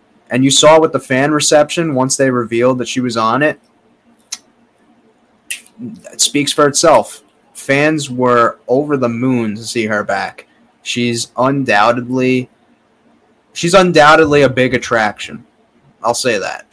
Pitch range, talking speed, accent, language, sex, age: 115-135 Hz, 135 wpm, American, English, male, 20-39